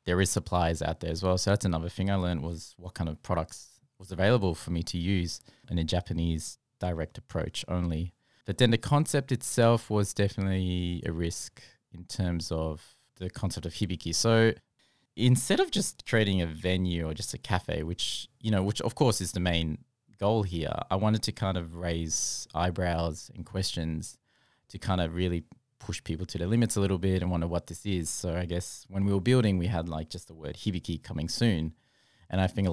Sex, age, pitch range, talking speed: male, 20-39, 85-105 Hz, 210 wpm